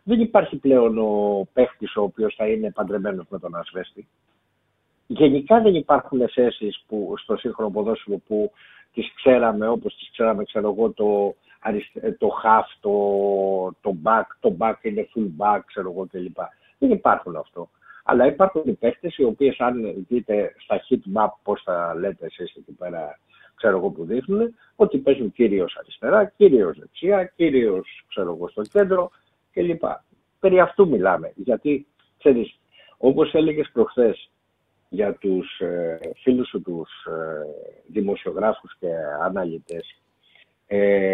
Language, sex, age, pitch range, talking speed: Greek, male, 60-79, 105-175 Hz, 145 wpm